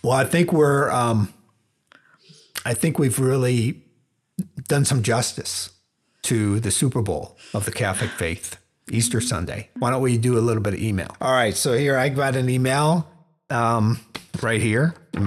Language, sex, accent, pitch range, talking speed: English, male, American, 105-150 Hz, 170 wpm